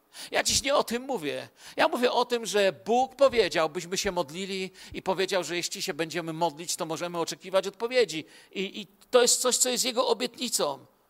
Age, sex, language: 50-69, male, Polish